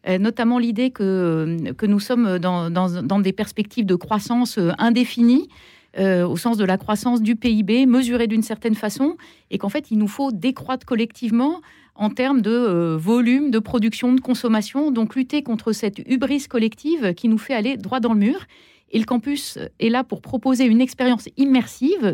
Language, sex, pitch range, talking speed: French, female, 205-255 Hz, 175 wpm